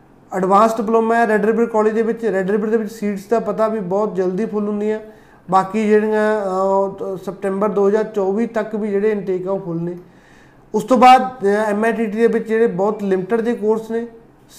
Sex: male